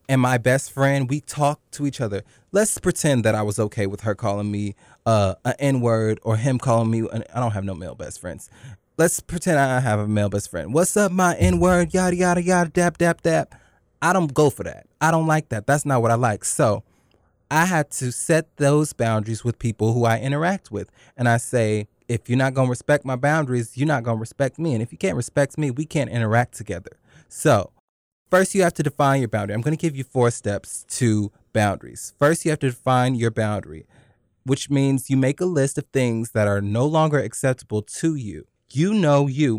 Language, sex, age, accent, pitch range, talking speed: English, male, 20-39, American, 110-145 Hz, 225 wpm